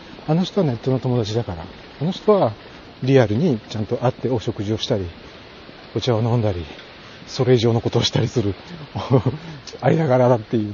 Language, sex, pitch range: Japanese, male, 110-160 Hz